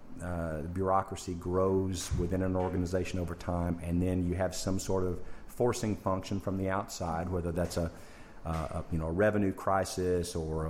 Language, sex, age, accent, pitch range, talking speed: English, male, 40-59, American, 85-95 Hz, 175 wpm